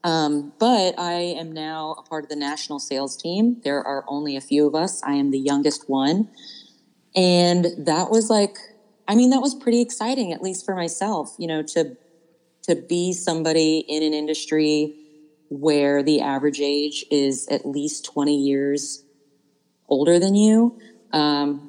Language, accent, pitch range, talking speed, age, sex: English, American, 140-160 Hz, 165 wpm, 30-49, female